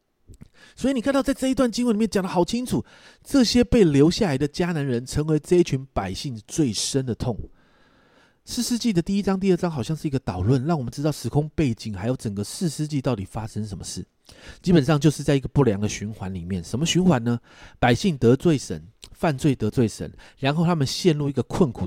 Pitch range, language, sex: 115-185 Hz, Chinese, male